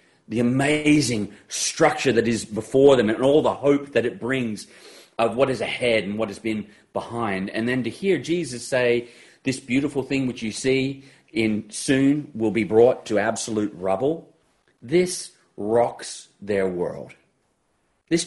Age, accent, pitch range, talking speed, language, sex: 40-59, Australian, 110-175 Hz, 160 wpm, English, male